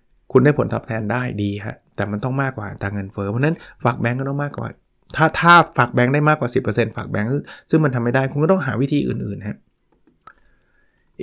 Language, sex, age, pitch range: Thai, male, 20-39, 110-145 Hz